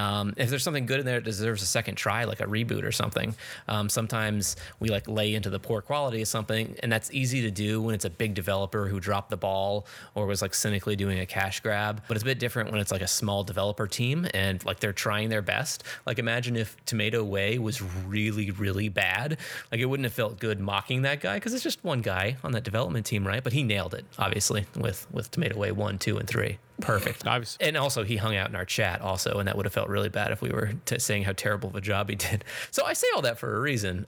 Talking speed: 255 wpm